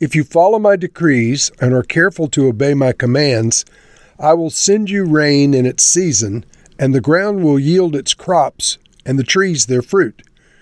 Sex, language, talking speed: male, English, 180 wpm